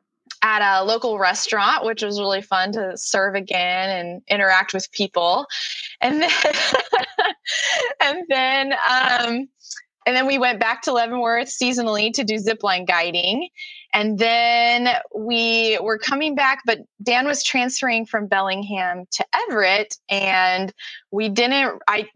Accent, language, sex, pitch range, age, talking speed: American, English, female, 190-255 Hz, 20-39, 135 wpm